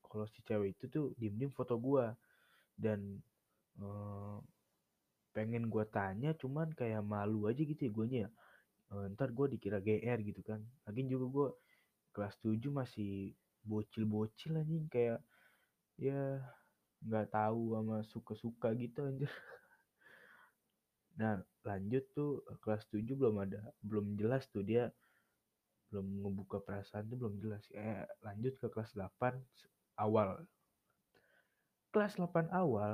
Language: Indonesian